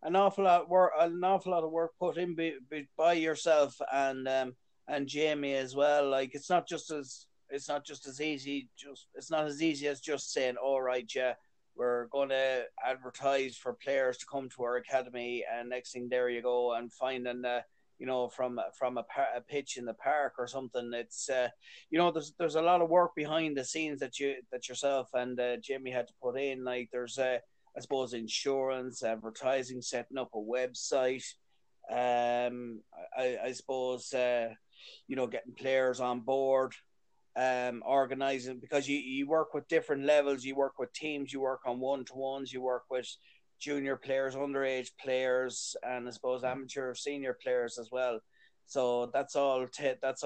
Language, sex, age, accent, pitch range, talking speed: English, male, 30-49, Irish, 125-145 Hz, 190 wpm